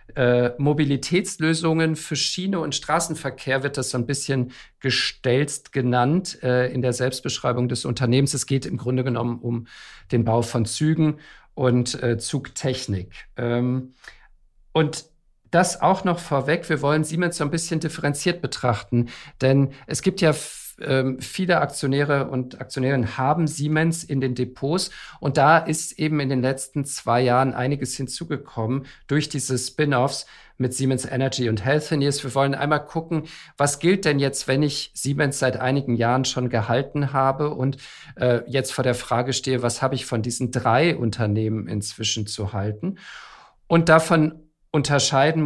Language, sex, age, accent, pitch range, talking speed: German, male, 50-69, German, 125-150 Hz, 150 wpm